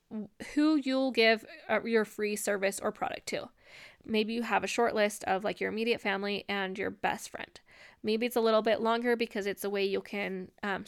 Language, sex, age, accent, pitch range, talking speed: English, female, 10-29, American, 210-245 Hz, 205 wpm